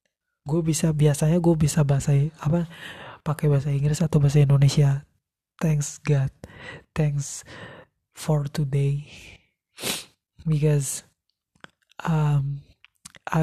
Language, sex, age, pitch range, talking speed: Indonesian, male, 20-39, 140-165 Hz, 85 wpm